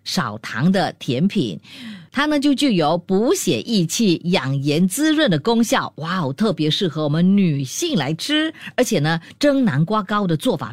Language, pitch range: Chinese, 155-240 Hz